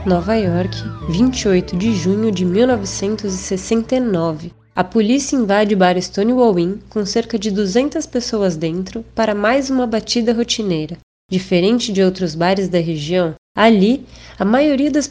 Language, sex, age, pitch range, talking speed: Portuguese, female, 20-39, 190-240 Hz, 140 wpm